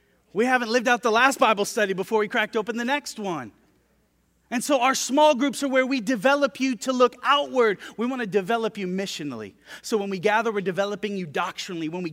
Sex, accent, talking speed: male, American, 220 wpm